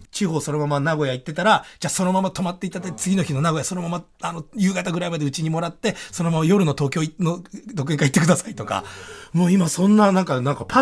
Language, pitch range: Japanese, 120-205 Hz